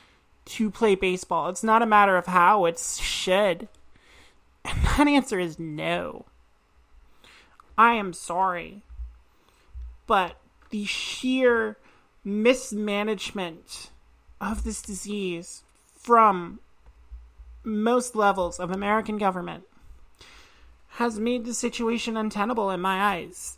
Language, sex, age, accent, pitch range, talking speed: English, male, 30-49, American, 185-220 Hz, 100 wpm